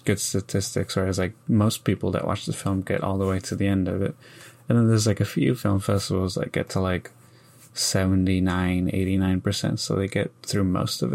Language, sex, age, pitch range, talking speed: English, male, 20-39, 95-110 Hz, 205 wpm